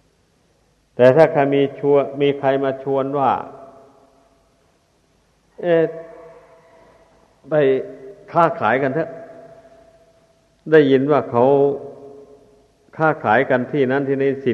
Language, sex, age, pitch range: Thai, male, 60-79, 115-135 Hz